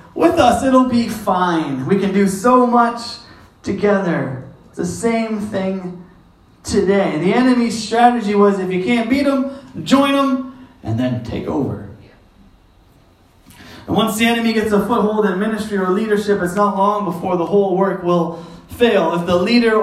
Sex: male